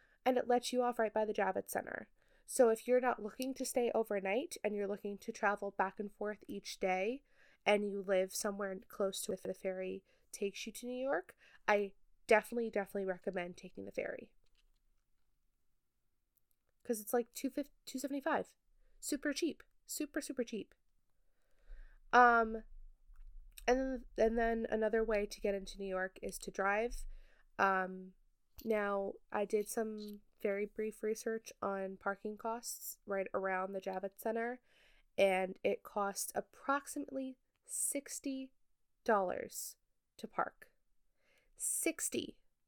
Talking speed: 140 wpm